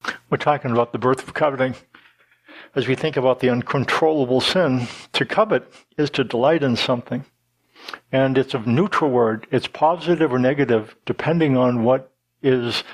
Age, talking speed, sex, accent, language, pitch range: 60-79, 160 wpm, male, American, English, 120-150 Hz